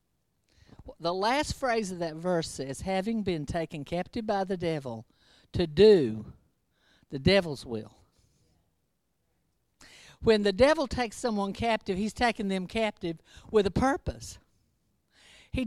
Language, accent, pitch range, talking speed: English, American, 170-245 Hz, 125 wpm